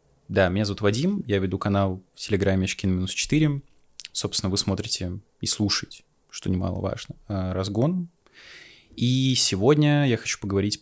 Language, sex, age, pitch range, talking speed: Russian, male, 20-39, 95-130 Hz, 135 wpm